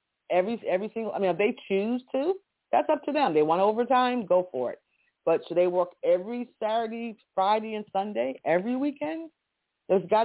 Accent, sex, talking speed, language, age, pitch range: American, female, 185 wpm, English, 40-59, 155-220 Hz